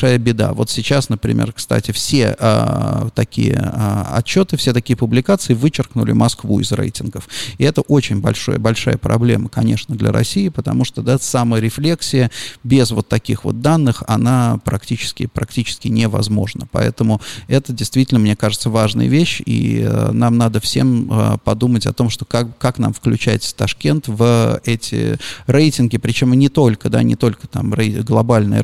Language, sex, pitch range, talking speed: Russian, male, 110-130 Hz, 155 wpm